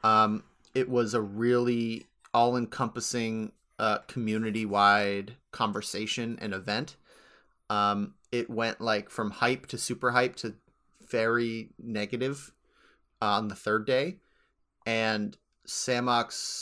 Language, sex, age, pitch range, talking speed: English, male, 30-49, 110-125 Hz, 105 wpm